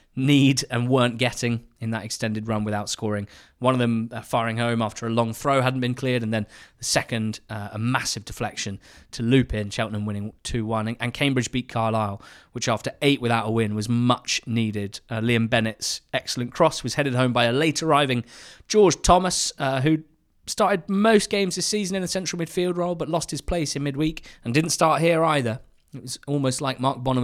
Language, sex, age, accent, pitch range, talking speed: English, male, 20-39, British, 115-140 Hz, 205 wpm